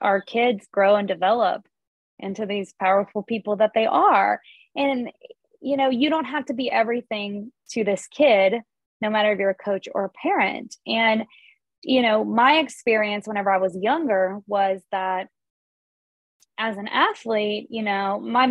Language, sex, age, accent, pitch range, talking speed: English, female, 20-39, American, 195-245 Hz, 160 wpm